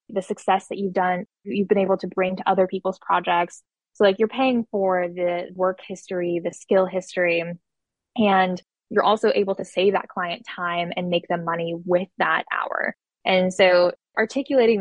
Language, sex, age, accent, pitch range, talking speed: English, female, 10-29, American, 180-205 Hz, 180 wpm